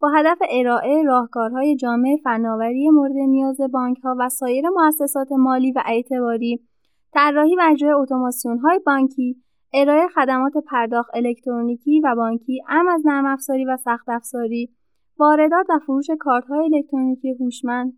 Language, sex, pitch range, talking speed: Persian, female, 235-295 Hz, 130 wpm